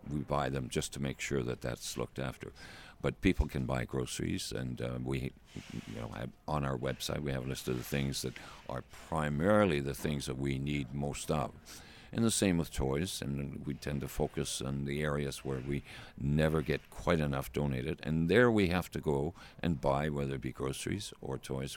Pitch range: 70-80 Hz